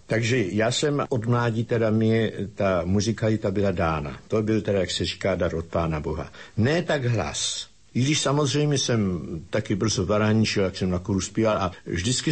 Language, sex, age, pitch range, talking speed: Slovak, male, 60-79, 95-120 Hz, 185 wpm